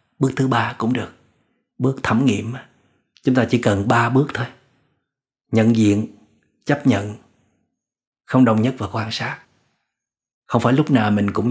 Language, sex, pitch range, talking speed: Vietnamese, male, 110-130 Hz, 160 wpm